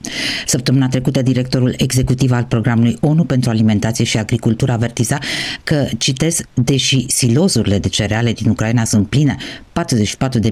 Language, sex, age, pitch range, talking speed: Romanian, female, 50-69, 105-135 Hz, 135 wpm